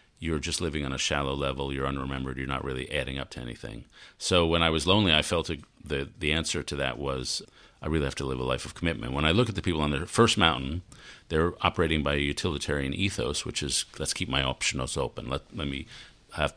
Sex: male